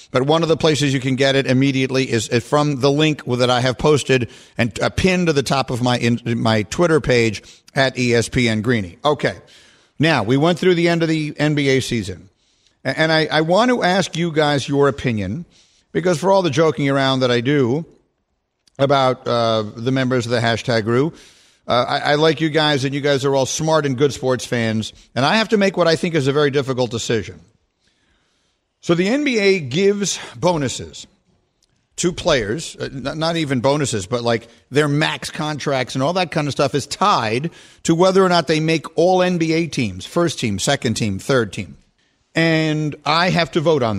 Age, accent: 50-69, American